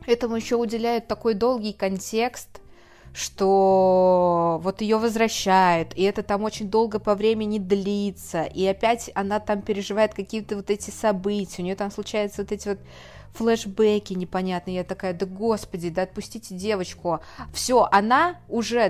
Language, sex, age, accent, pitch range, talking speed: Russian, female, 20-39, native, 180-225 Hz, 145 wpm